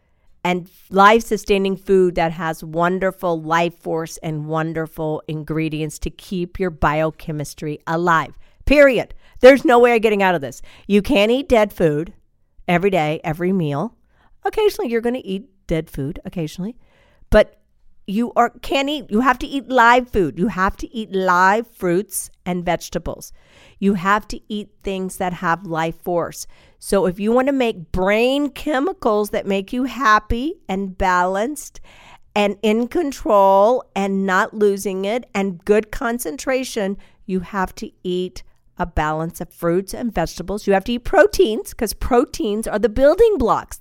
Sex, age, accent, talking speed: female, 50-69, American, 160 wpm